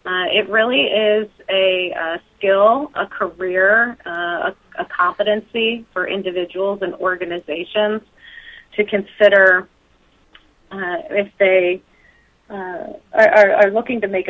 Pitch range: 180-210 Hz